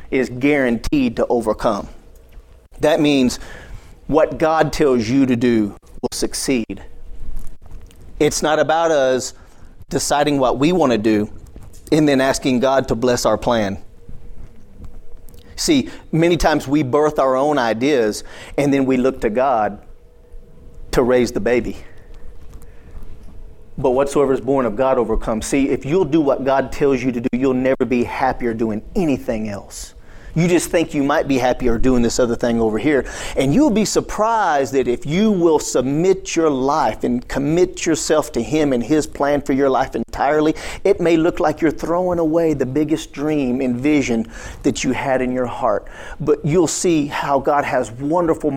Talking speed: 165 wpm